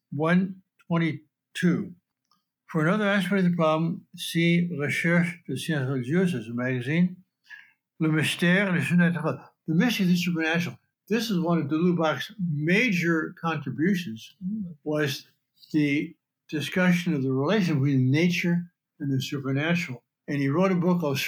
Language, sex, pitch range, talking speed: English, male, 140-175 Hz, 145 wpm